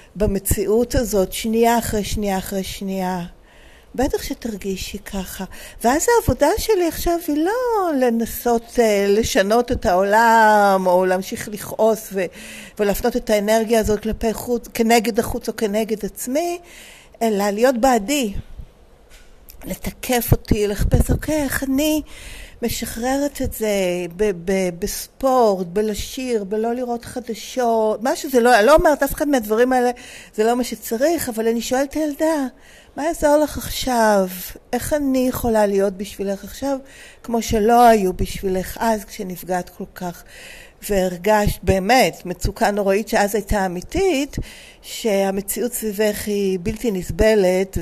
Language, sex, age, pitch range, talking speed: Hebrew, female, 50-69, 195-250 Hz, 120 wpm